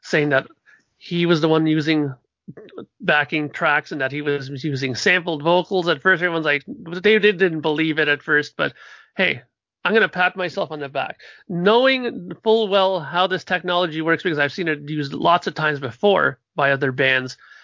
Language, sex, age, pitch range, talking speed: English, male, 40-59, 145-185 Hz, 185 wpm